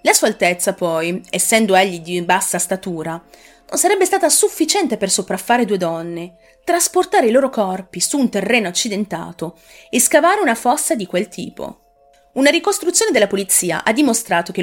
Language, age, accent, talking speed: Italian, 30-49, native, 160 wpm